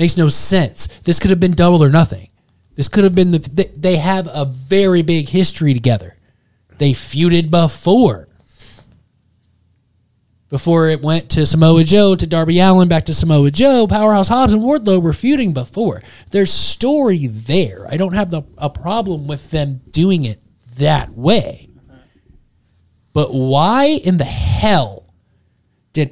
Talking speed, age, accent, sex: 150 wpm, 20-39, American, male